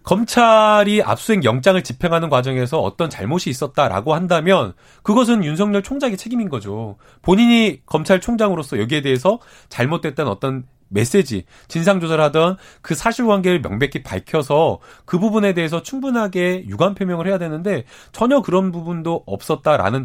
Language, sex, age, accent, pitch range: Korean, male, 30-49, native, 140-205 Hz